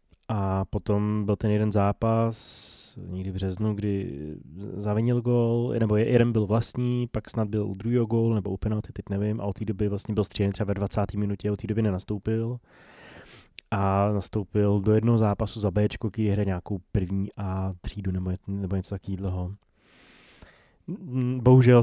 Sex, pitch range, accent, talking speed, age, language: male, 100-115 Hz, native, 160 wpm, 20-39, Czech